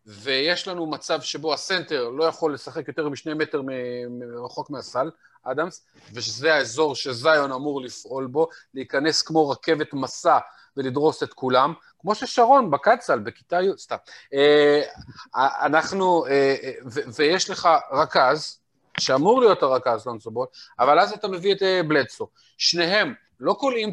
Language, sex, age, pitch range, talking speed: Hebrew, male, 30-49, 140-180 Hz, 145 wpm